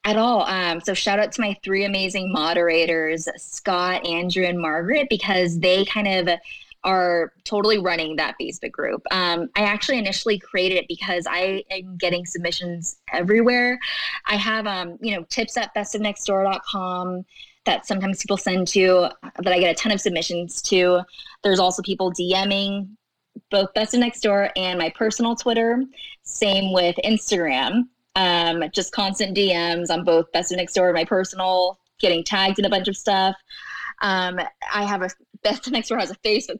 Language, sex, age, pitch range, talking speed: English, female, 20-39, 180-215 Hz, 170 wpm